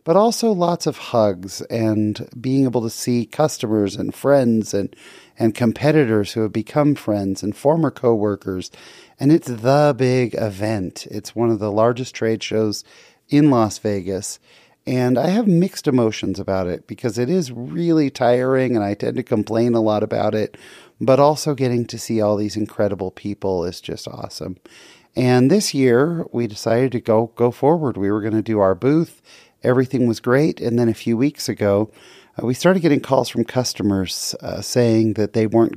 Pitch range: 105-130 Hz